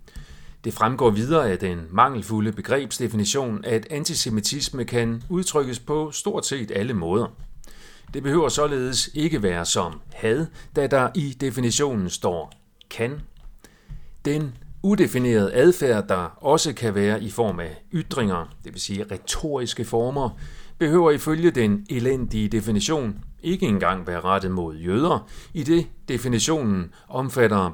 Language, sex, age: Danish, male, 40-59